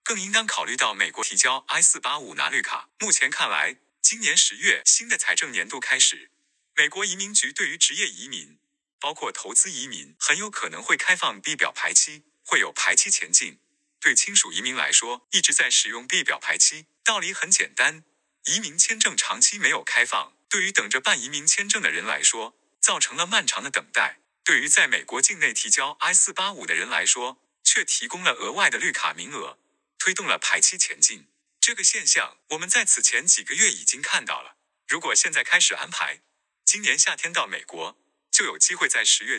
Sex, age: male, 30-49